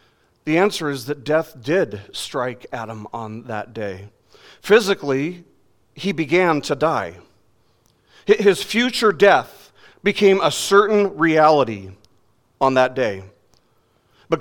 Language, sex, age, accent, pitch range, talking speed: English, male, 40-59, American, 125-180 Hz, 110 wpm